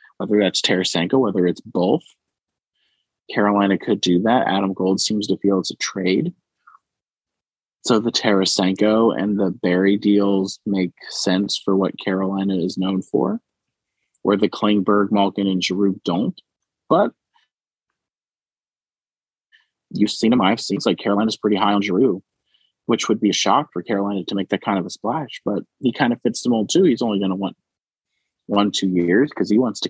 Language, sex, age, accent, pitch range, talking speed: English, male, 30-49, American, 95-105 Hz, 175 wpm